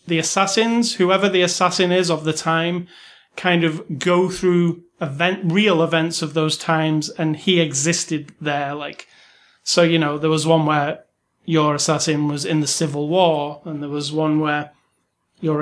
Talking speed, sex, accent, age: 170 wpm, male, British, 30-49